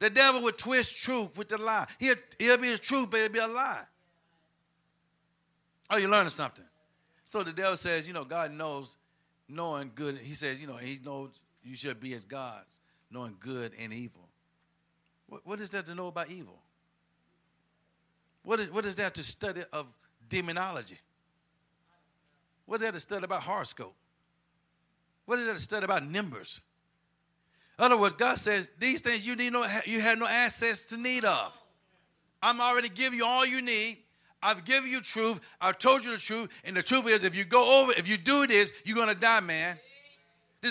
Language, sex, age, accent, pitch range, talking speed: English, male, 50-69, American, 165-235 Hz, 190 wpm